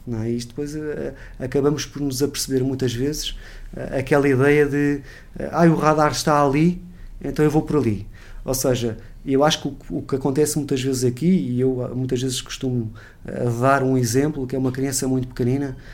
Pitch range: 120-150 Hz